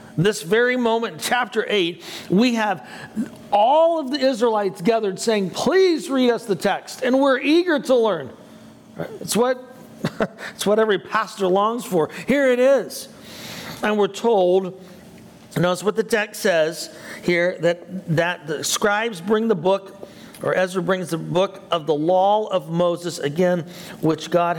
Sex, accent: male, American